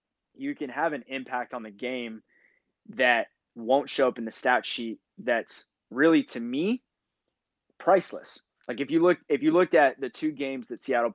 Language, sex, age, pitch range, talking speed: English, male, 20-39, 115-145 Hz, 185 wpm